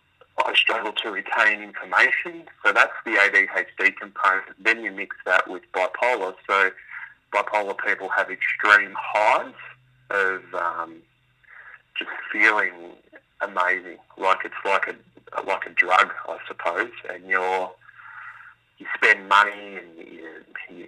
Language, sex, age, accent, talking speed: English, male, 30-49, Australian, 125 wpm